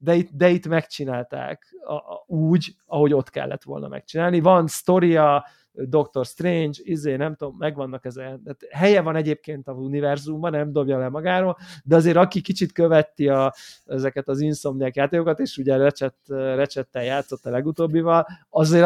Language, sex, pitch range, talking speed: Hungarian, male, 135-160 Hz, 155 wpm